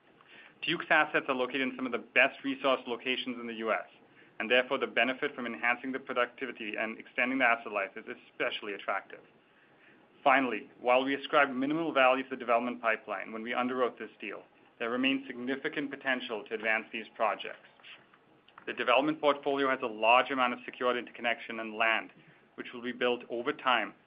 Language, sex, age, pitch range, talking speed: English, male, 30-49, 120-135 Hz, 175 wpm